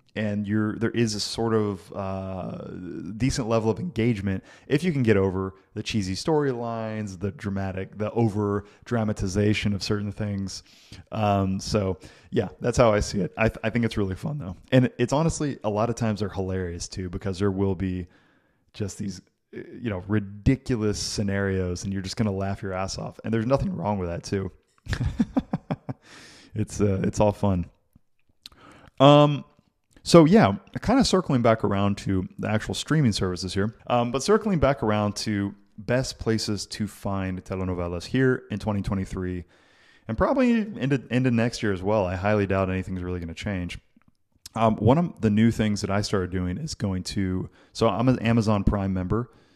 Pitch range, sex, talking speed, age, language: 95-115 Hz, male, 180 wpm, 20-39, English